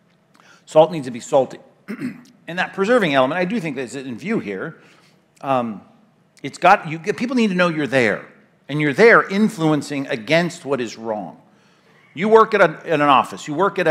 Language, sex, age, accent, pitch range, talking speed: English, male, 50-69, American, 155-215 Hz, 190 wpm